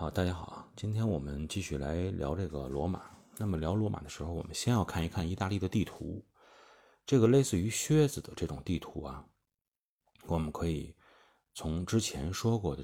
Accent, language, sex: native, Chinese, male